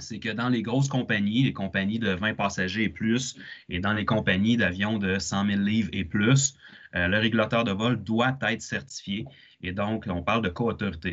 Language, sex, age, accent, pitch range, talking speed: French, male, 30-49, Canadian, 100-125 Hz, 205 wpm